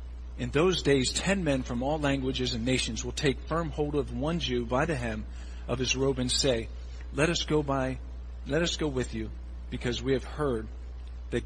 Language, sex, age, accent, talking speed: English, male, 50-69, American, 205 wpm